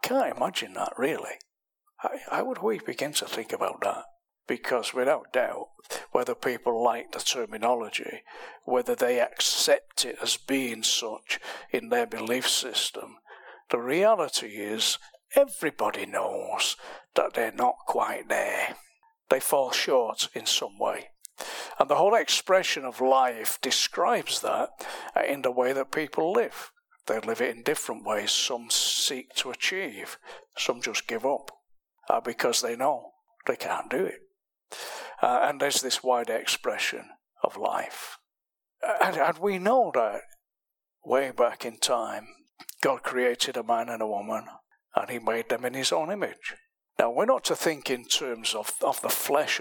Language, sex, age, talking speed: English, male, 60-79, 155 wpm